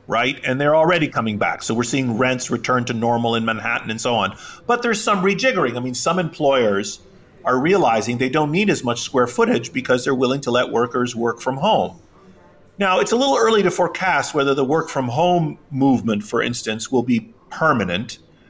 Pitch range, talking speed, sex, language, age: 120-175 Hz, 200 wpm, male, Greek, 40-59